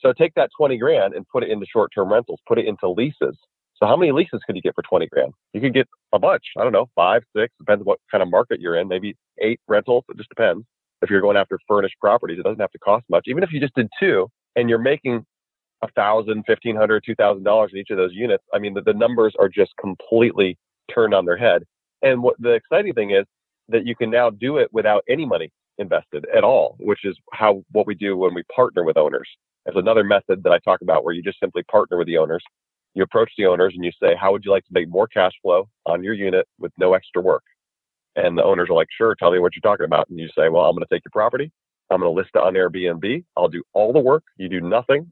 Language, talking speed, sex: English, 260 wpm, male